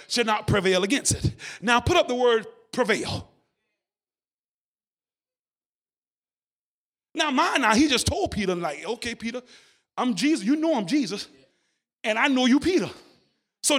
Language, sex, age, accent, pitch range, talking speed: English, male, 30-49, American, 240-330 Hz, 145 wpm